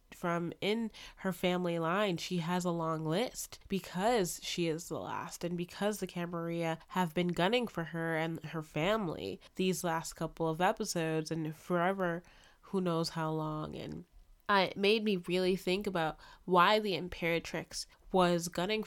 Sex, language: female, English